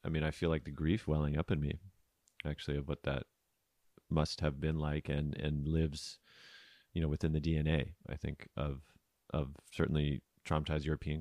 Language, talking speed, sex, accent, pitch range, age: English, 180 wpm, male, American, 75-90 Hz, 30-49